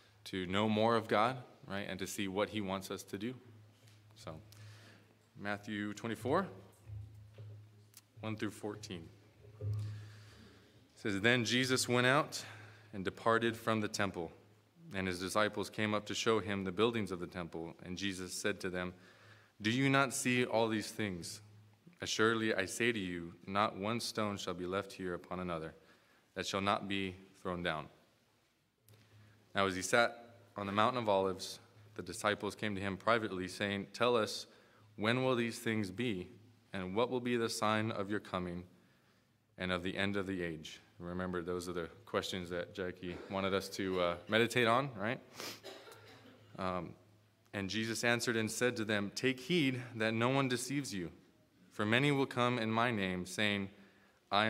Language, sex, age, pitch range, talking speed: English, male, 20-39, 95-110 Hz, 170 wpm